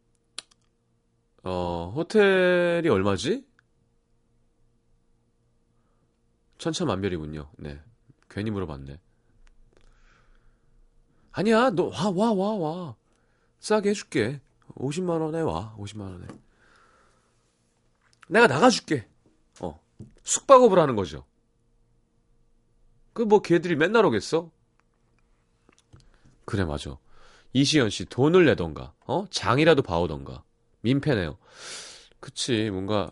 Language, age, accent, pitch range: Korean, 30-49, native, 90-150 Hz